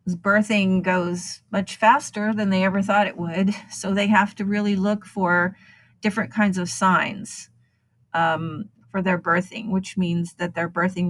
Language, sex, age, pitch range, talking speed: English, female, 40-59, 175-200 Hz, 160 wpm